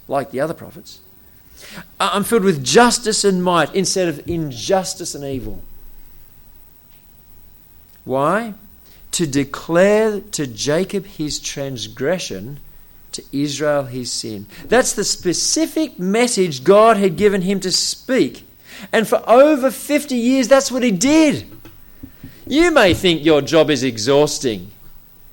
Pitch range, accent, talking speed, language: 140-210 Hz, Australian, 125 wpm, English